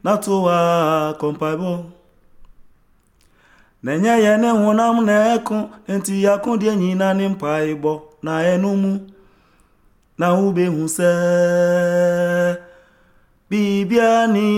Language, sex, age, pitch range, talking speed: Italian, male, 30-49, 160-210 Hz, 90 wpm